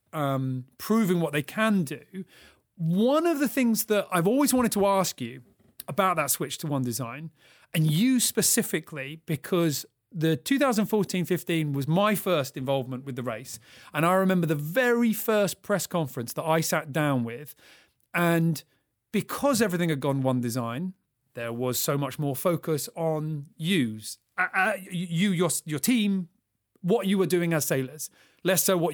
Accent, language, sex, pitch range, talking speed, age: British, English, male, 140-190 Hz, 165 wpm, 30-49